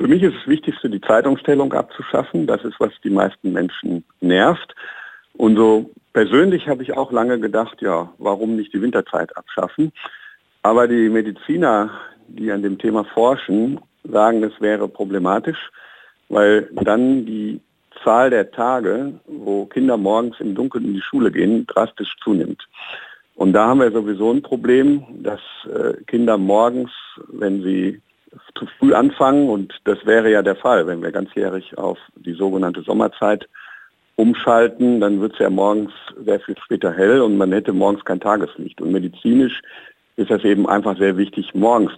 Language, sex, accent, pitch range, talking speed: German, male, German, 100-120 Hz, 155 wpm